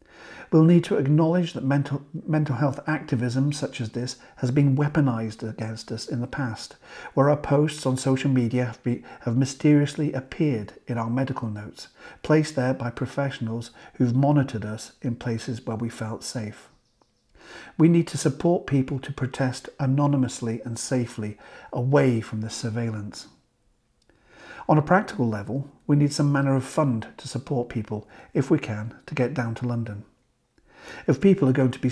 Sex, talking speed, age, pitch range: male, 165 wpm, 50-69, 120-145 Hz